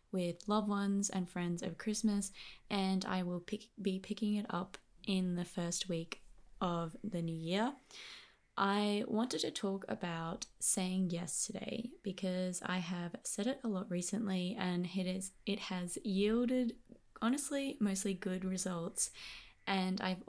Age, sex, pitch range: 20-39, female, 175-210 Hz